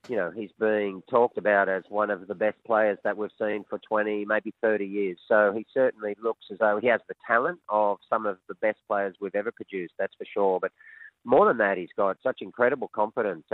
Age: 40-59